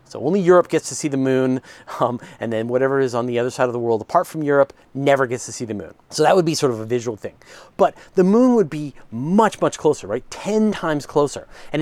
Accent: American